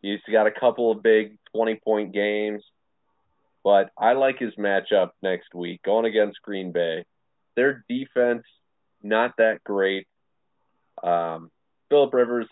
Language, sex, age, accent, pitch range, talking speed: English, male, 20-39, American, 90-105 Hz, 130 wpm